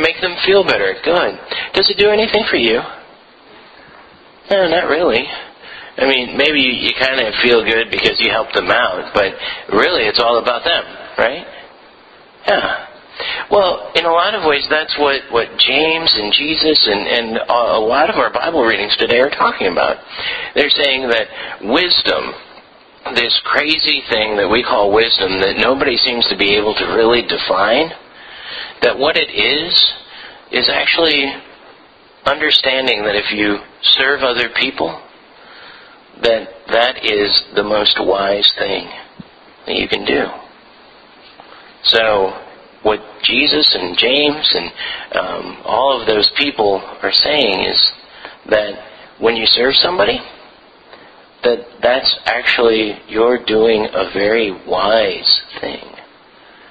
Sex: male